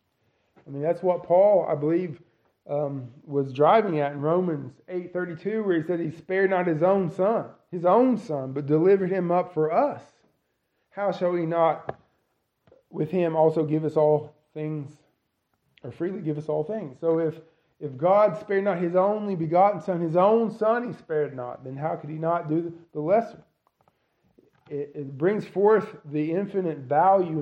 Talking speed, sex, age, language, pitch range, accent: 180 wpm, male, 20-39, English, 150-190 Hz, American